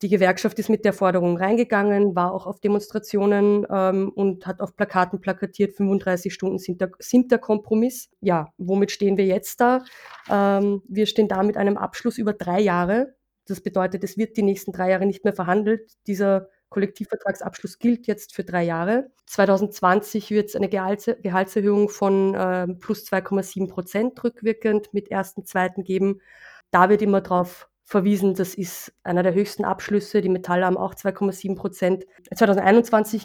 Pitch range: 190-215 Hz